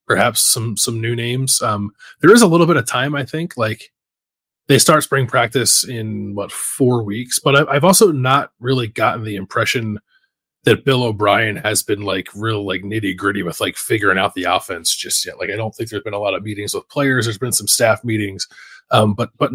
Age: 20-39